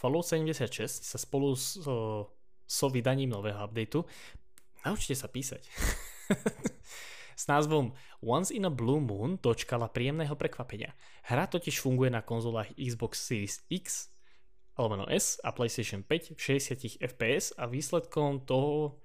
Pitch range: 105-135 Hz